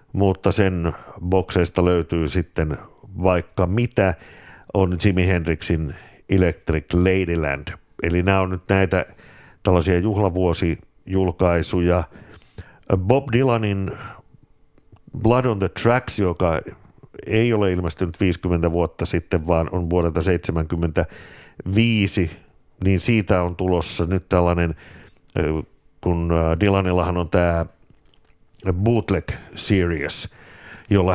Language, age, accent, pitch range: Finnish, 60-79, native, 85-100 Hz